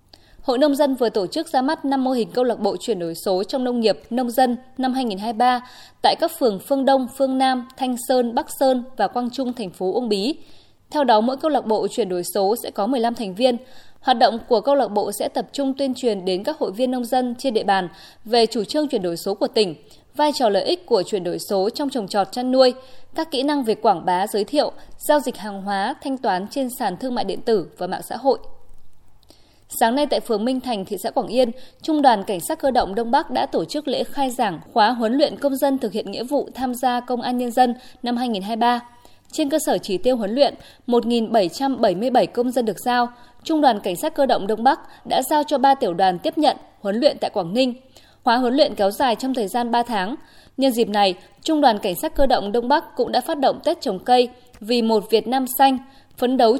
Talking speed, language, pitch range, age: 245 wpm, Vietnamese, 220-270 Hz, 20-39